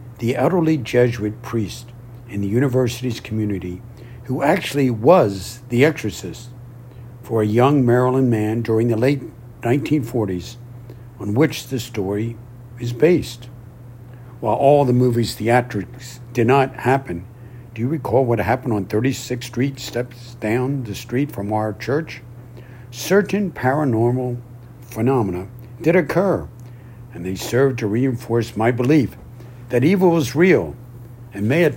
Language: English